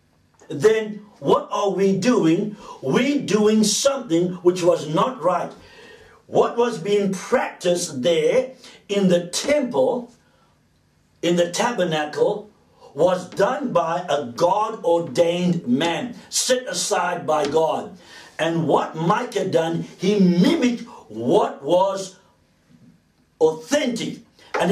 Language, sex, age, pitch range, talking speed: English, male, 60-79, 175-235 Hz, 105 wpm